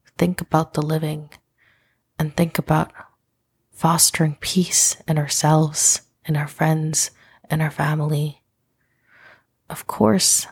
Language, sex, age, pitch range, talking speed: English, female, 30-49, 145-170 Hz, 110 wpm